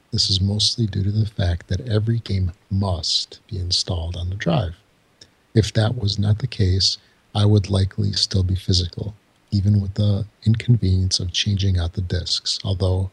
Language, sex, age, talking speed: English, male, 50-69, 175 wpm